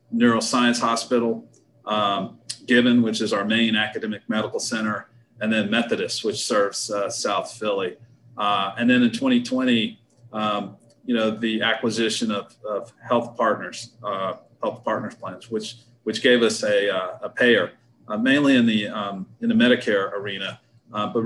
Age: 30-49